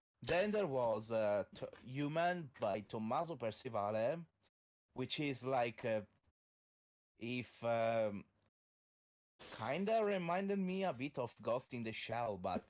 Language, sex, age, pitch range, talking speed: English, male, 30-49, 105-125 Hz, 120 wpm